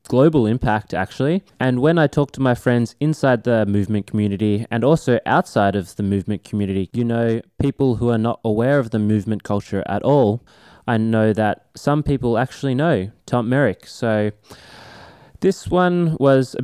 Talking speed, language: 175 wpm, English